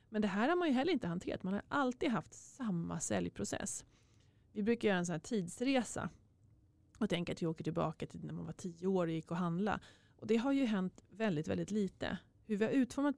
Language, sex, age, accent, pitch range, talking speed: Swedish, female, 30-49, native, 165-225 Hz, 225 wpm